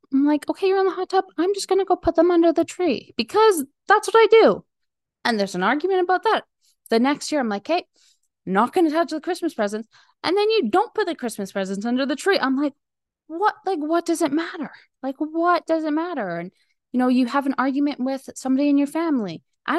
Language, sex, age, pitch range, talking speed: English, female, 20-39, 195-300 Hz, 235 wpm